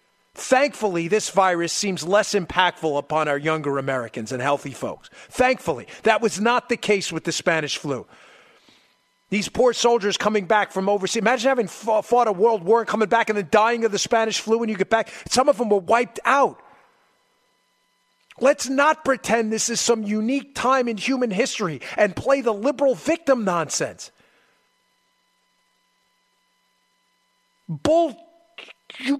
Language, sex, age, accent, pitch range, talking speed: English, male, 50-69, American, 190-250 Hz, 155 wpm